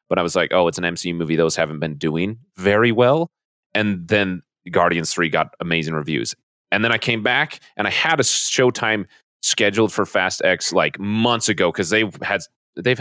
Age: 30-49